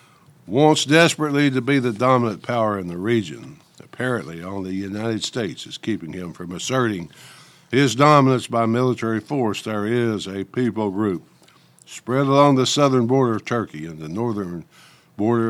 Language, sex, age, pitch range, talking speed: English, male, 60-79, 105-140 Hz, 160 wpm